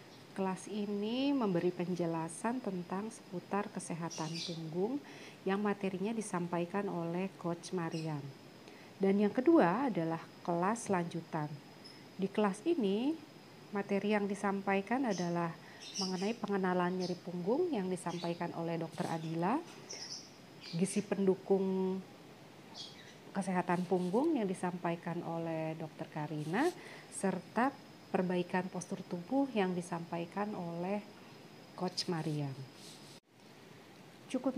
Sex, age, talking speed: female, 30-49, 95 wpm